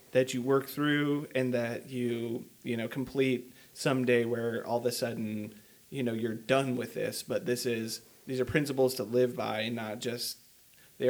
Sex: male